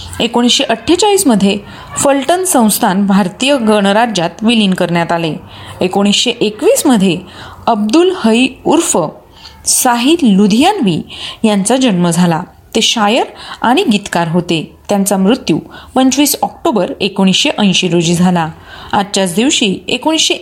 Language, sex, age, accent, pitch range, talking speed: Marathi, female, 30-49, native, 190-265 Hz, 100 wpm